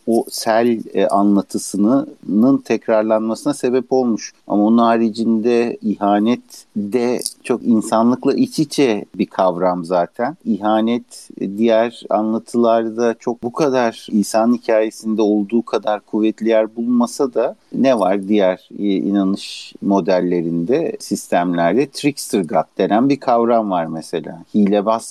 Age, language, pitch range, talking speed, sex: 50-69, Turkish, 95-120 Hz, 110 wpm, male